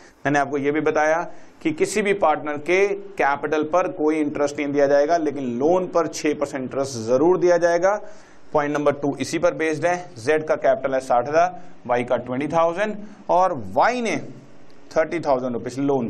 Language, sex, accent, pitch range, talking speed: Hindi, male, native, 130-195 Hz, 185 wpm